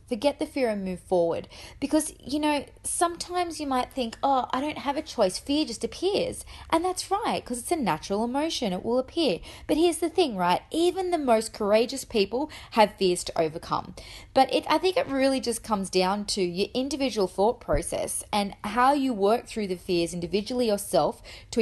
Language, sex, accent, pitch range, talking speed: English, female, Australian, 185-260 Hz, 195 wpm